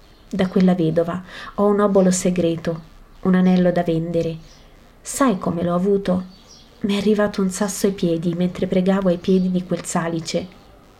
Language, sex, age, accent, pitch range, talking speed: Italian, female, 30-49, native, 170-215 Hz, 160 wpm